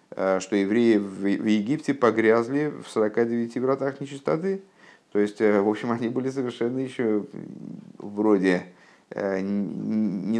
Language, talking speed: Russian, 110 wpm